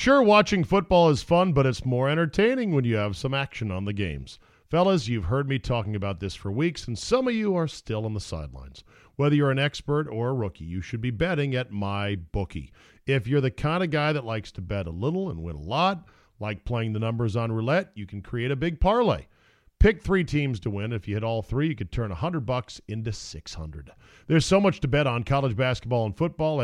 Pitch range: 110-160 Hz